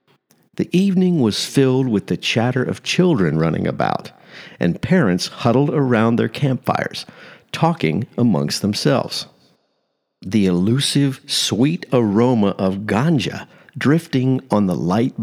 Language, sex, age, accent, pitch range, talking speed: English, male, 50-69, American, 105-150 Hz, 120 wpm